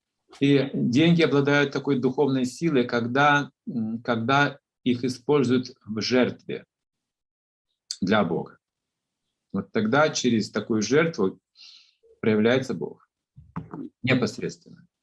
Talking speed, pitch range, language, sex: 90 wpm, 110-145 Hz, Russian, male